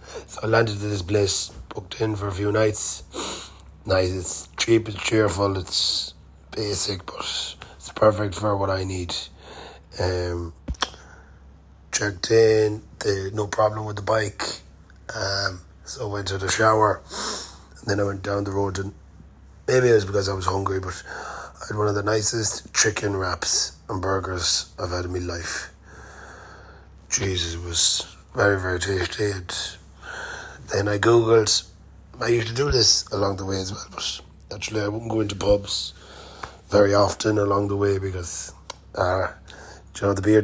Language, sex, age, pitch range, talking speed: English, male, 30-49, 85-105 Hz, 165 wpm